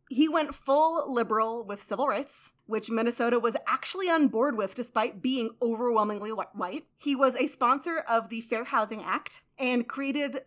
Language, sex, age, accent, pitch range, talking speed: English, female, 30-49, American, 225-290 Hz, 165 wpm